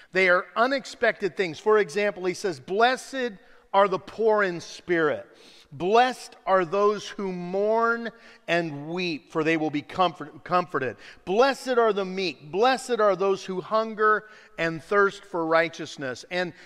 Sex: male